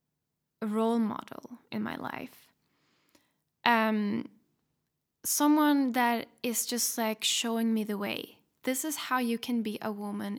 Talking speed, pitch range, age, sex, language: 135 wpm, 210-240 Hz, 10-29, female, English